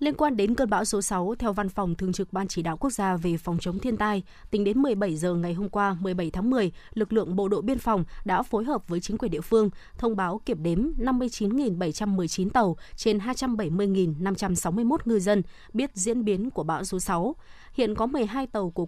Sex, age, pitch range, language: female, 20-39, 185-235 Hz, Vietnamese